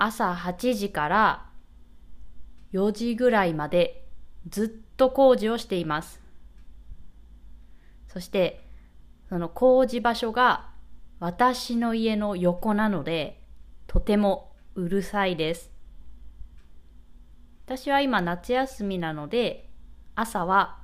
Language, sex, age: Japanese, female, 20-39